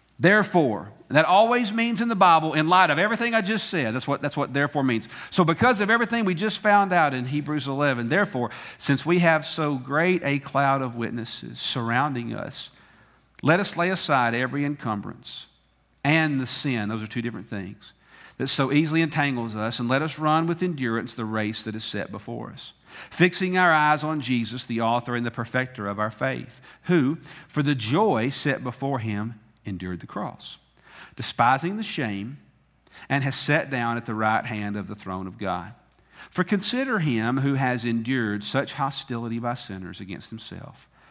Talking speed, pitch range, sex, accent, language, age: 180 wpm, 120-160 Hz, male, American, English, 50-69